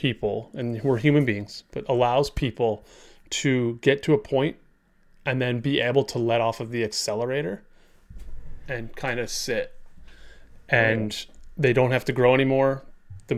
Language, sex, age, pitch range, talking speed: English, male, 30-49, 115-140 Hz, 155 wpm